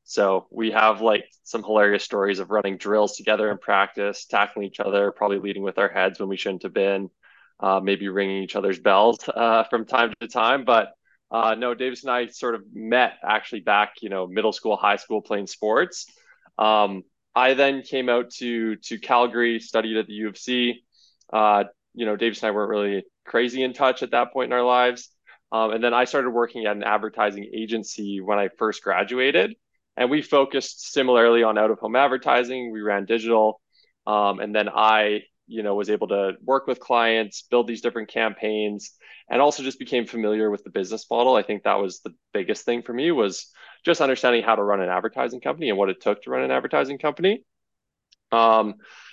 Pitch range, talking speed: 105-120 Hz, 200 wpm